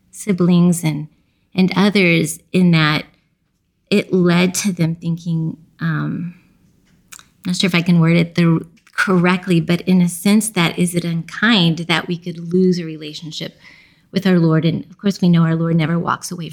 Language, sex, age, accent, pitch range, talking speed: English, female, 30-49, American, 165-190 Hz, 175 wpm